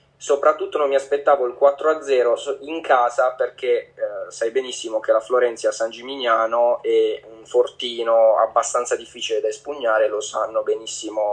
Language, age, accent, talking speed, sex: Italian, 20-39, native, 145 wpm, male